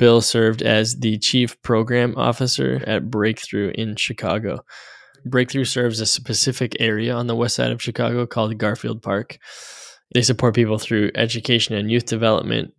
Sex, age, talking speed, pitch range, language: male, 10-29, 155 wpm, 105-120 Hz, English